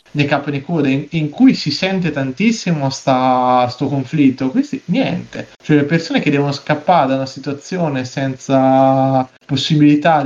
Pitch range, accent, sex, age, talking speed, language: 130-150 Hz, native, male, 20-39, 150 wpm, Italian